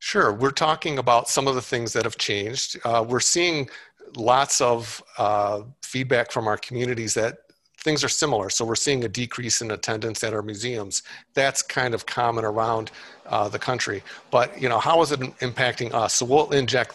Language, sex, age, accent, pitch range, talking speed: English, male, 50-69, American, 115-125 Hz, 190 wpm